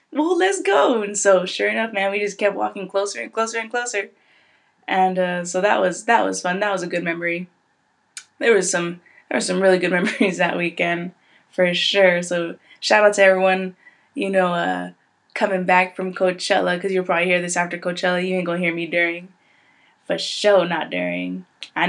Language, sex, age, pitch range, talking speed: English, female, 20-39, 175-215 Hz, 200 wpm